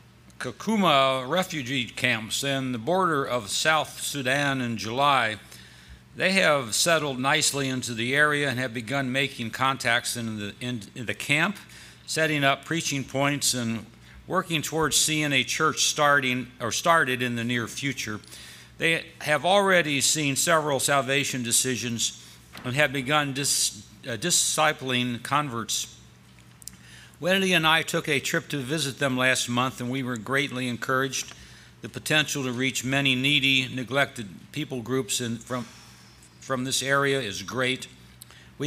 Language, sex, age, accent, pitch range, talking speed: English, male, 60-79, American, 115-145 Hz, 145 wpm